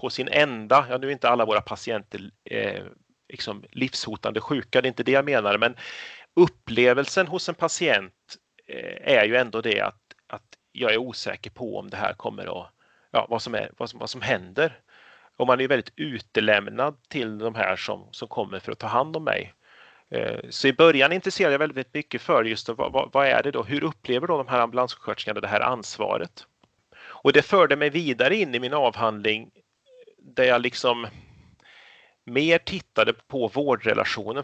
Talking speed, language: 190 wpm, Swedish